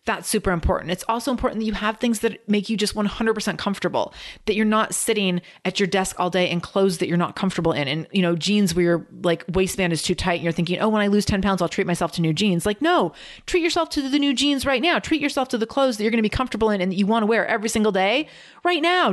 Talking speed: 280 wpm